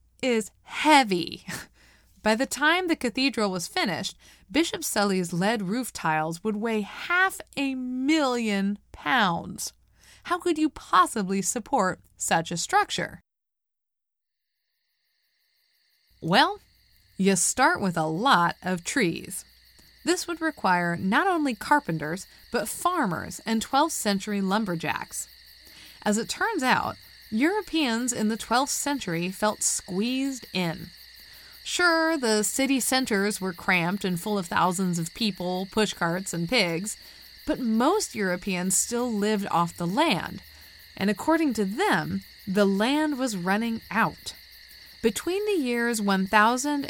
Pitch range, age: 190-275 Hz, 20-39